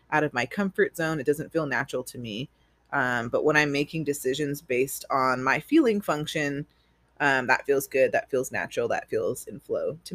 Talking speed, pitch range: 200 wpm, 140-210 Hz